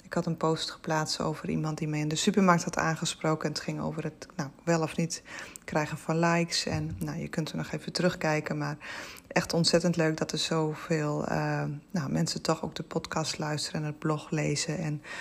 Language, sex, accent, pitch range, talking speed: Dutch, female, Dutch, 155-175 Hz, 215 wpm